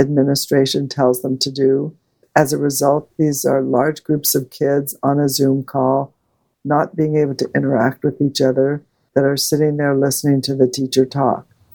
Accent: American